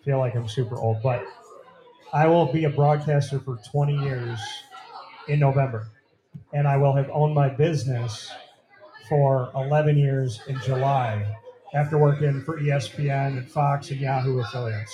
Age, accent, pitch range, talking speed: 30-49, American, 135-160 Hz, 150 wpm